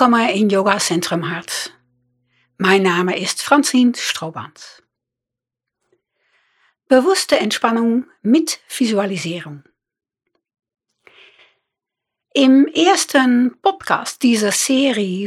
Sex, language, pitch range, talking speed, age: female, Dutch, 190-280 Hz, 70 wpm, 60-79